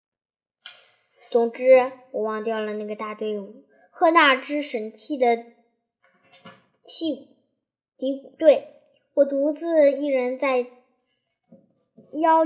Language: Chinese